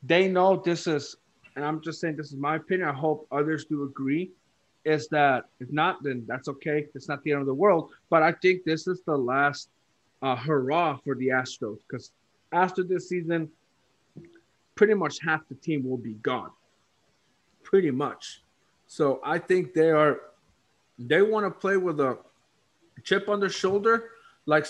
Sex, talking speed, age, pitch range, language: male, 180 wpm, 30-49, 145-195 Hz, English